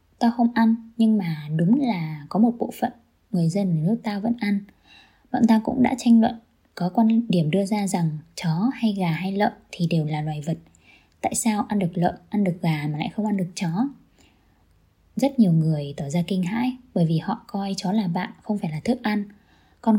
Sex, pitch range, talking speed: female, 170-220 Hz, 220 wpm